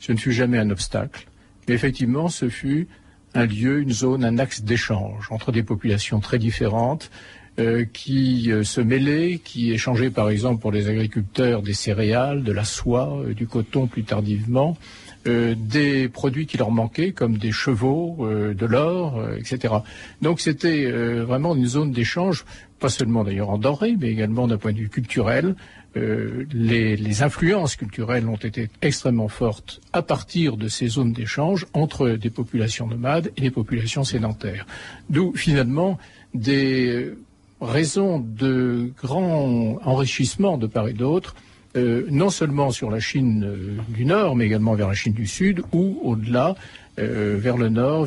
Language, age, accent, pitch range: French, 50-69, French, 110-135 Hz